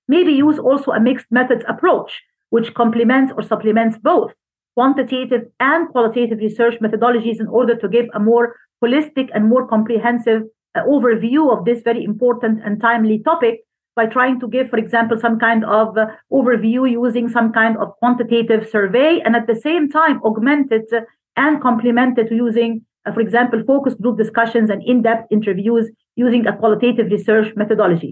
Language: English